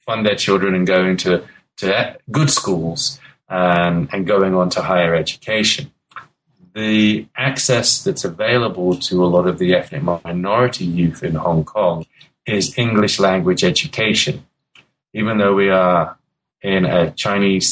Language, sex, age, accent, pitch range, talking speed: English, male, 30-49, British, 90-115 Hz, 140 wpm